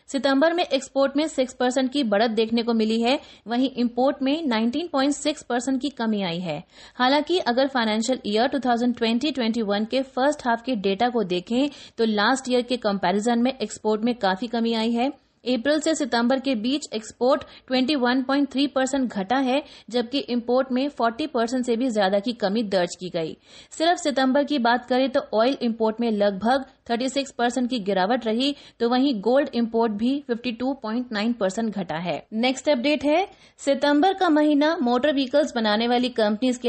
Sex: female